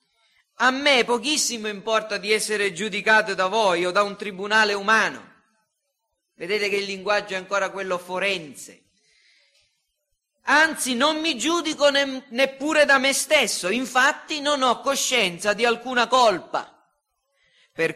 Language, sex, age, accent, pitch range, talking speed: Italian, male, 40-59, native, 190-265 Hz, 125 wpm